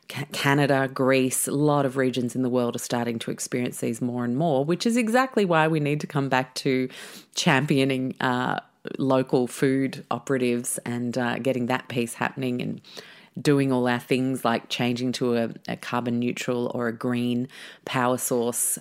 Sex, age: female, 30-49